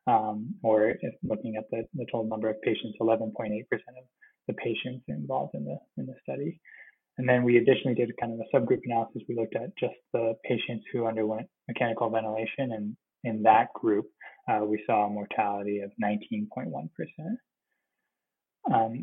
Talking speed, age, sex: 165 wpm, 20-39, male